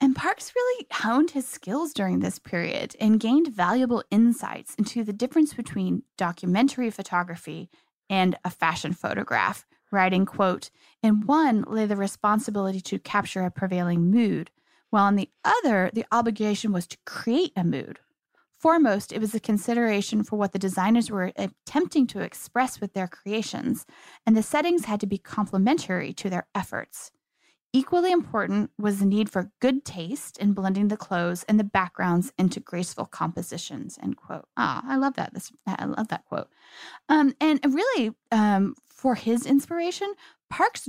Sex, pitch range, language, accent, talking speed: female, 190-250 Hz, English, American, 160 wpm